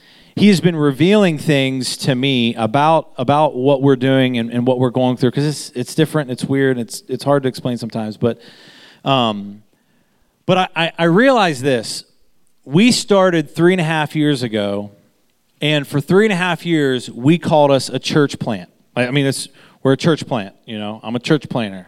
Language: English